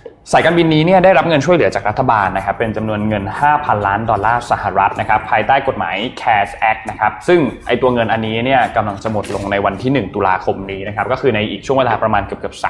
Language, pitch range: Thai, 105-140 Hz